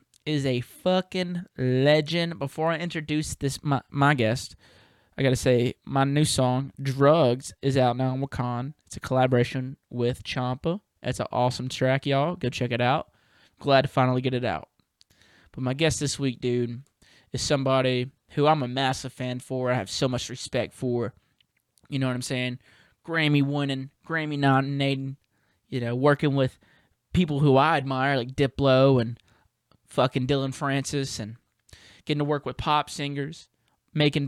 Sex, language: male, English